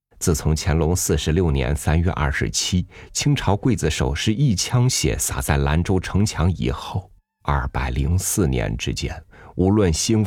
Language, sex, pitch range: Chinese, male, 80-100 Hz